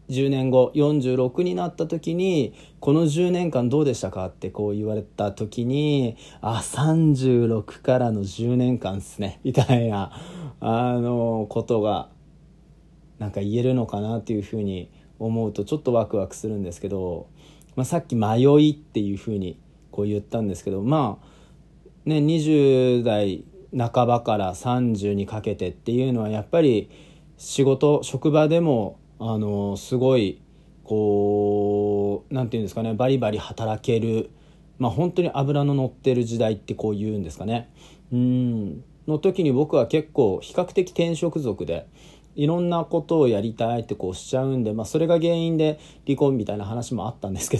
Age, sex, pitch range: 40-59, male, 110-155 Hz